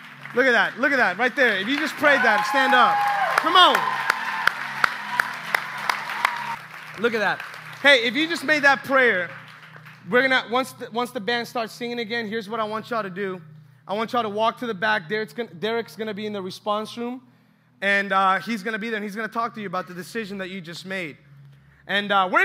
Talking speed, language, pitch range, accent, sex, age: 225 wpm, English, 165-235 Hz, American, male, 20-39